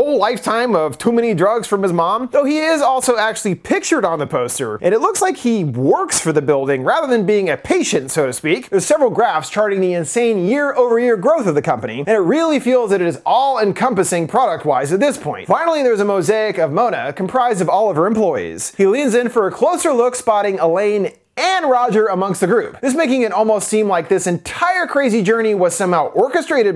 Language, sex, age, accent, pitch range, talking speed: English, male, 30-49, American, 185-260 Hz, 215 wpm